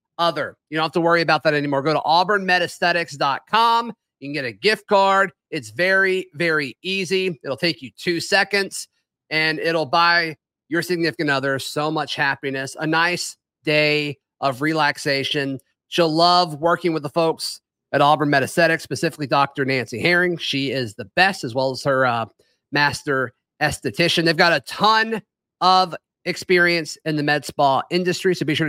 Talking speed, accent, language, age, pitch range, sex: 165 wpm, American, English, 30-49, 150-185 Hz, male